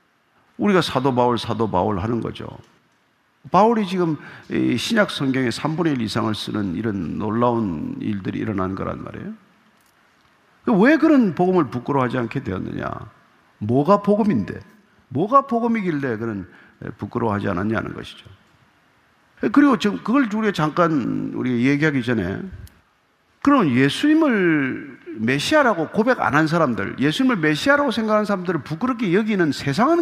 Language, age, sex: Korean, 50-69, male